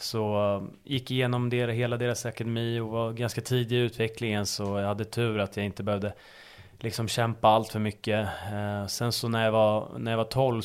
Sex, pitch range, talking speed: male, 105-120 Hz, 195 wpm